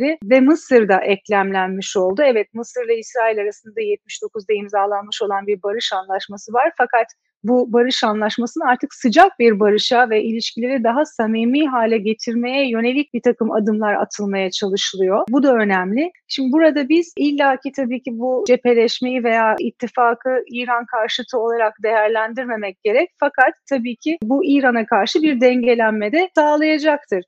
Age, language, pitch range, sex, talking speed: 30-49, Turkish, 205-270 Hz, female, 145 wpm